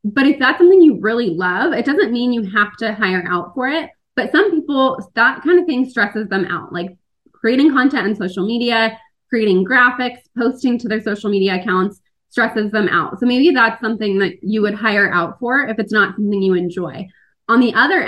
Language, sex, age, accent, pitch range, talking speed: English, female, 20-39, American, 195-245 Hz, 210 wpm